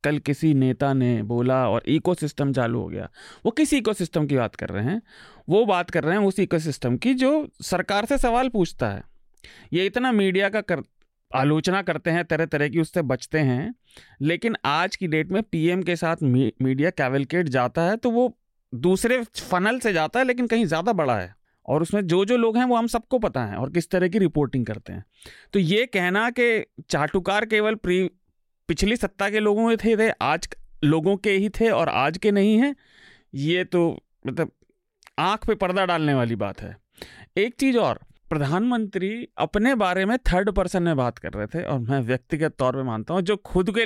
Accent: native